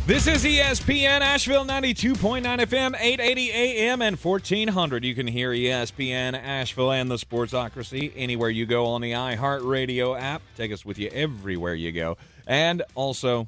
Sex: male